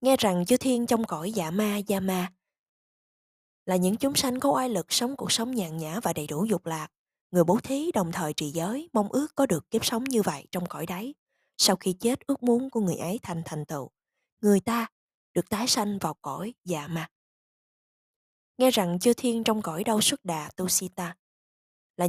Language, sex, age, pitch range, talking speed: Vietnamese, female, 20-39, 175-235 Hz, 205 wpm